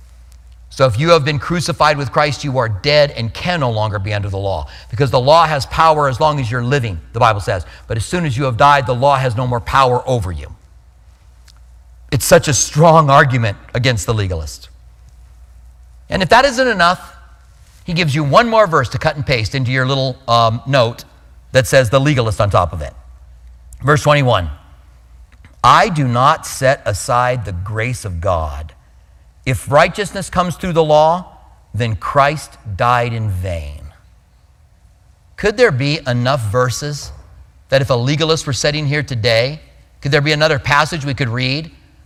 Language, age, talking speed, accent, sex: English, 40-59, 180 wpm, American, male